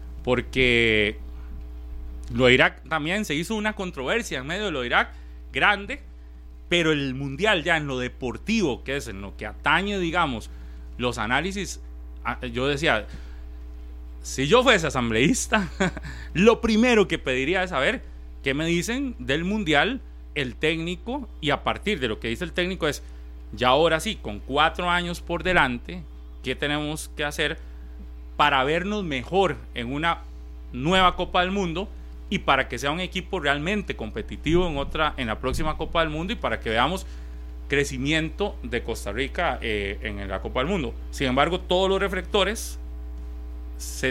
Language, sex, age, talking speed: Spanish, male, 30-49, 160 wpm